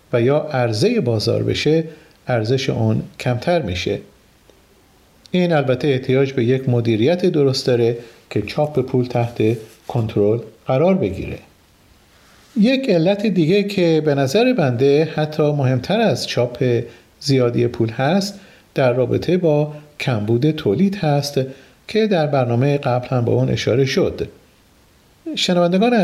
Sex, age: male, 50-69